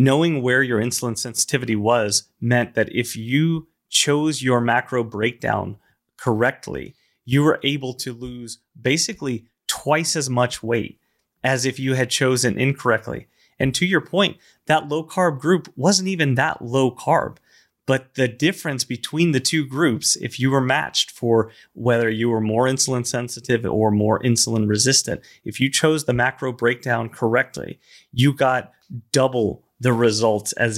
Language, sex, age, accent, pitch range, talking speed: English, male, 30-49, American, 115-135 Hz, 150 wpm